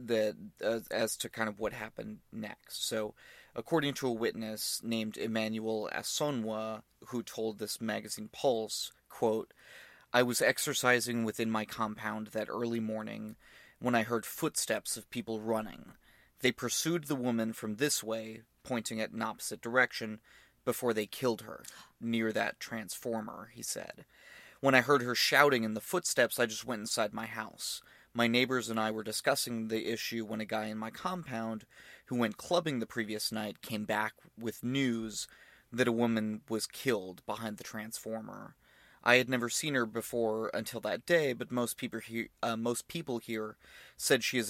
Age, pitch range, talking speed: 30-49, 110-120 Hz, 170 wpm